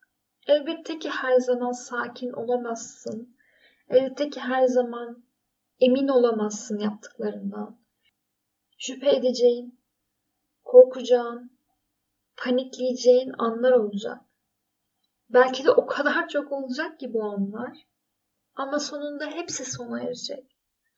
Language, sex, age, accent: Turkish, female, 10-29, native